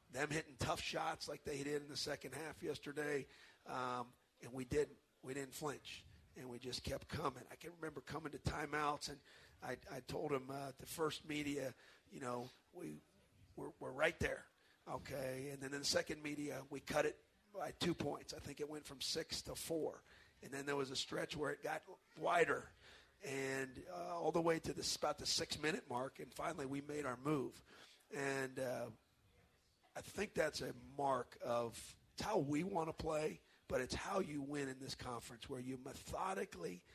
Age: 40-59